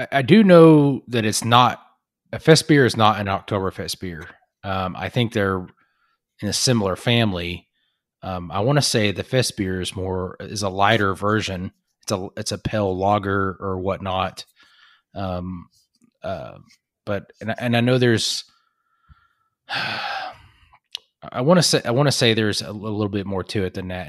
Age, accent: 30-49, American